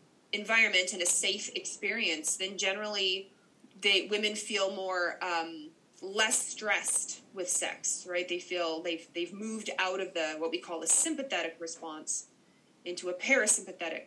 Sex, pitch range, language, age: female, 175-235 Hz, English, 20-39